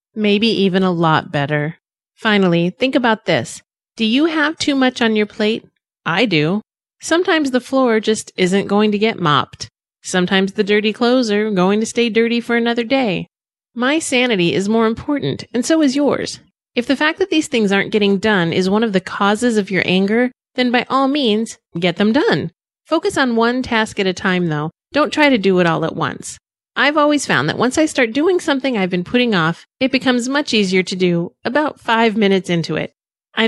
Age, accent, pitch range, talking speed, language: 30-49, American, 180-255 Hz, 205 wpm, English